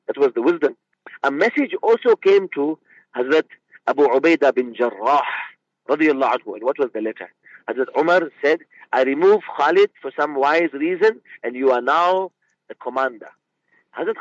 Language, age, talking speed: English, 50-69, 150 wpm